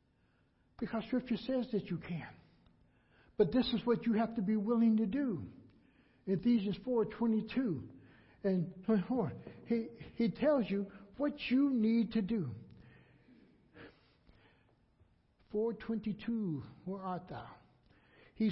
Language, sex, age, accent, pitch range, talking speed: English, male, 60-79, American, 185-240 Hz, 110 wpm